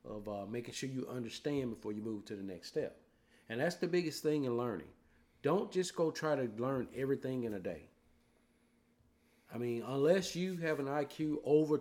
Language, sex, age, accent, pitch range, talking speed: English, male, 50-69, American, 115-150 Hz, 195 wpm